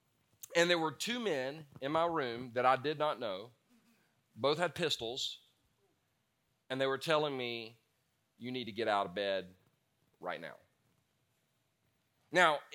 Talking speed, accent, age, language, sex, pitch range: 145 wpm, American, 40-59, English, male, 140-195 Hz